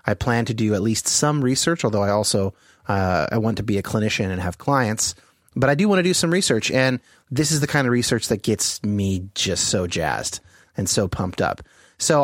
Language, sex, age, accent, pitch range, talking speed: English, male, 30-49, American, 105-145 Hz, 230 wpm